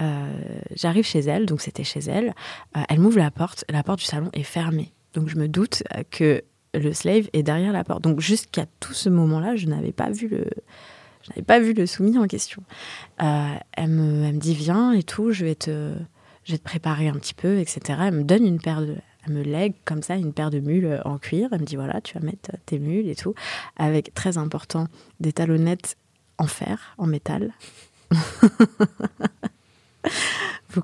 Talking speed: 205 wpm